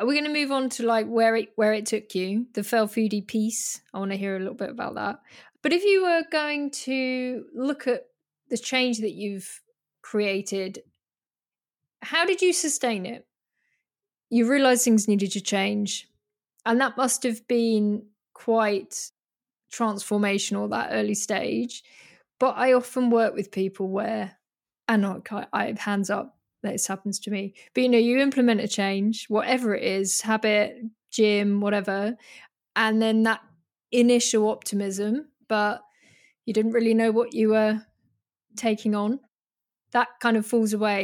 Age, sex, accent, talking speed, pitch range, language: 10-29, female, British, 160 wpm, 205-255 Hz, English